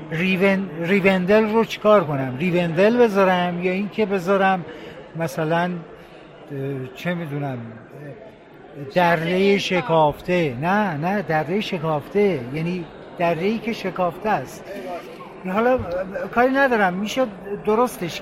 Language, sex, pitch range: Persian, male, 160-205 Hz